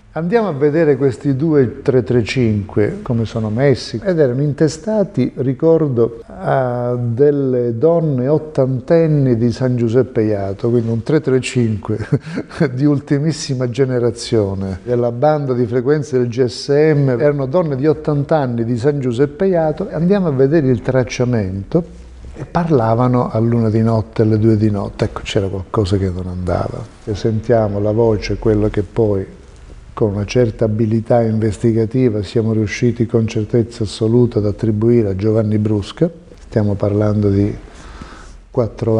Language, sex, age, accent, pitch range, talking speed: Italian, male, 50-69, native, 110-140 Hz, 135 wpm